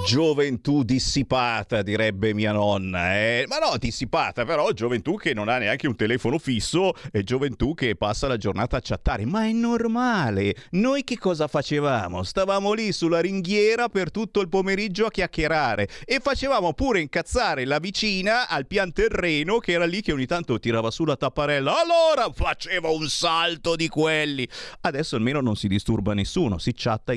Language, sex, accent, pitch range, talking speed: Italian, male, native, 120-180 Hz, 170 wpm